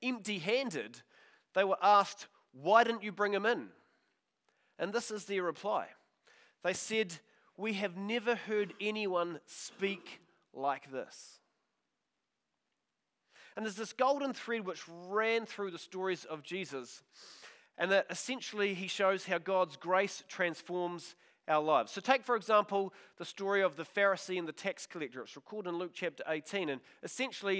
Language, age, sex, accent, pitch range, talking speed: English, 30-49, male, Australian, 170-210 Hz, 150 wpm